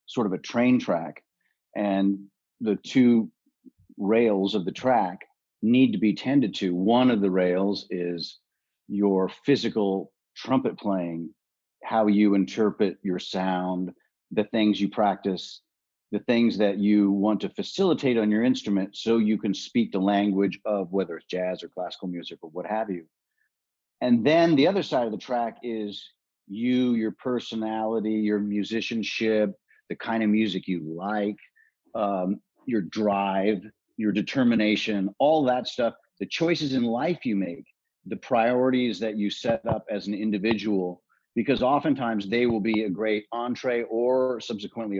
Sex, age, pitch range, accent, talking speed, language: male, 40-59, 100-120 Hz, American, 155 wpm, English